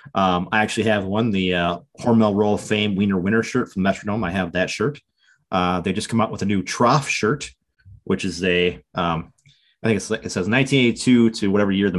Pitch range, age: 90-115 Hz, 30-49